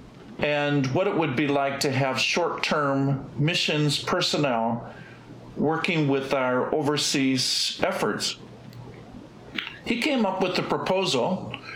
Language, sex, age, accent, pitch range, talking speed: English, male, 50-69, American, 135-175 Hz, 110 wpm